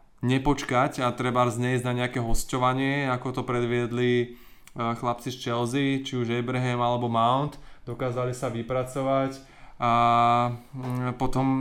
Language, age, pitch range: Slovak, 20-39, 125-135 Hz